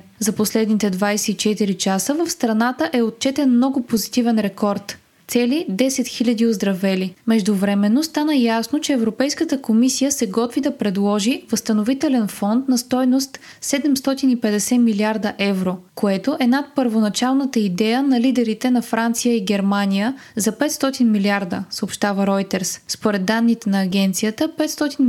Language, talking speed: Bulgarian, 130 wpm